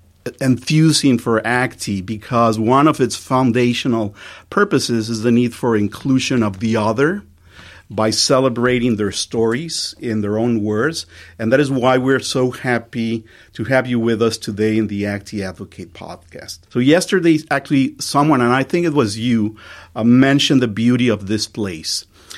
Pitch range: 105-130 Hz